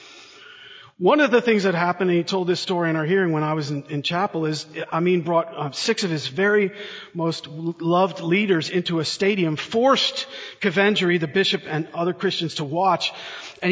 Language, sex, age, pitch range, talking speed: English, male, 40-59, 165-210 Hz, 190 wpm